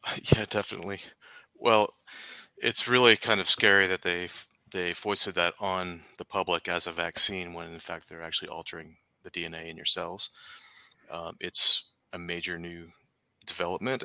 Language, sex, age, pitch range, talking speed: English, male, 30-49, 85-100 Hz, 160 wpm